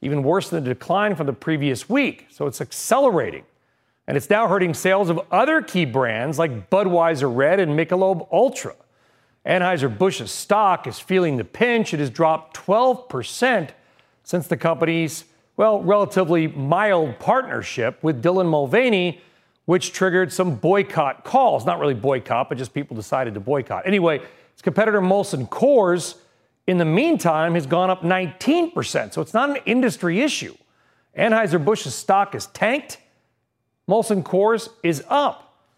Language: English